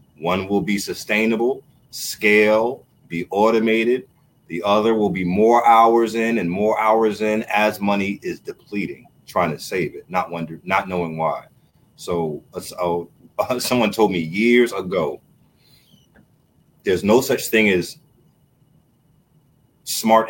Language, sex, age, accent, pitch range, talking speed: English, male, 30-49, American, 90-135 Hz, 135 wpm